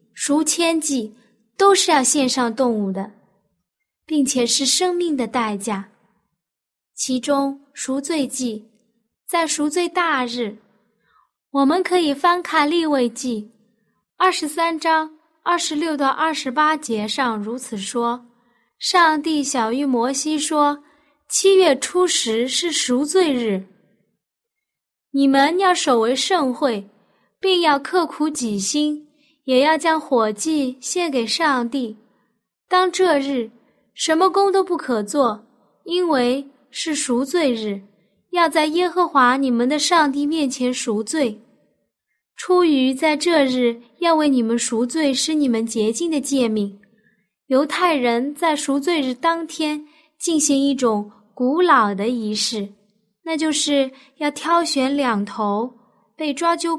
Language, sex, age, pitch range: Chinese, female, 20-39, 230-315 Hz